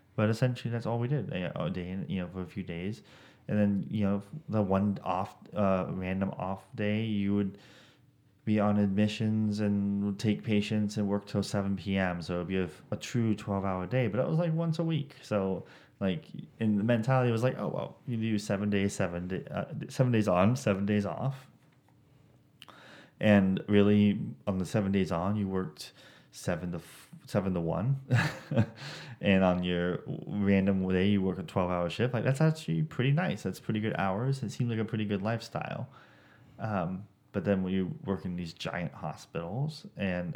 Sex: male